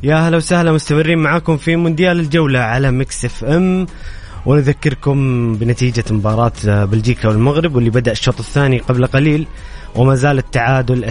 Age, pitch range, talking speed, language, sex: 20-39, 115-150 Hz, 140 wpm, Arabic, male